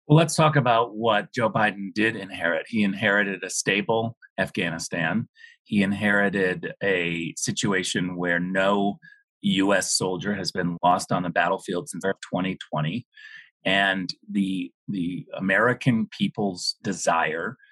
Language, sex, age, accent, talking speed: English, male, 40-59, American, 120 wpm